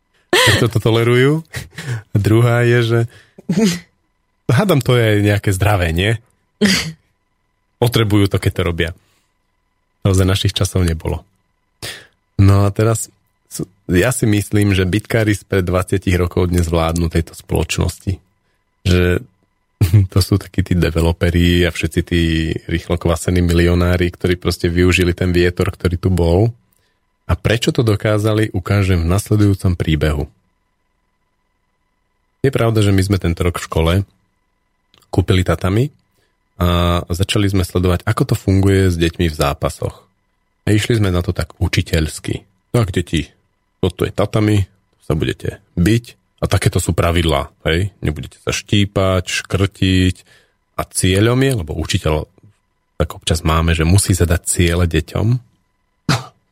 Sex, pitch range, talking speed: male, 90-105 Hz, 135 wpm